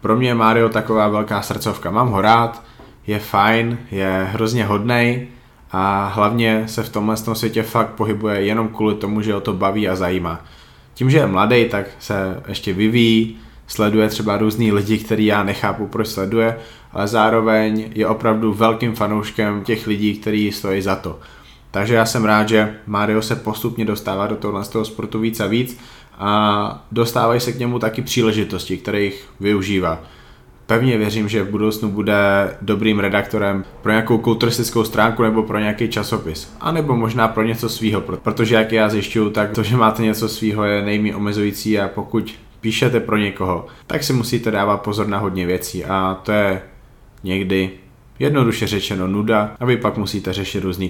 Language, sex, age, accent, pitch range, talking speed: Czech, male, 20-39, native, 100-115 Hz, 175 wpm